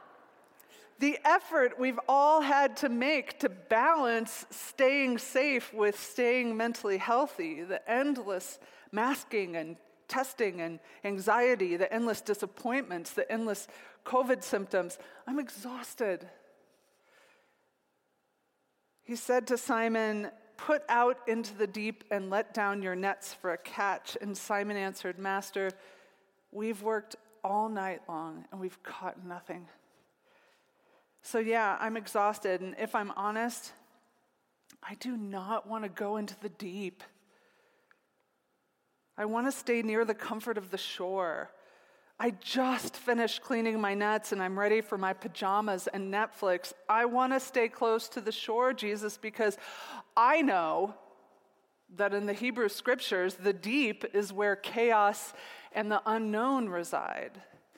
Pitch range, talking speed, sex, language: 200-245 Hz, 130 wpm, female, English